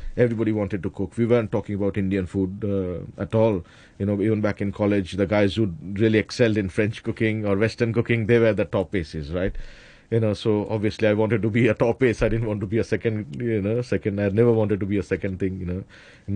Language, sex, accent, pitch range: English, male, Indian, 105-115 Hz